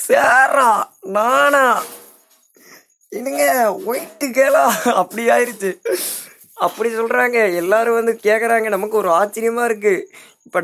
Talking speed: 95 wpm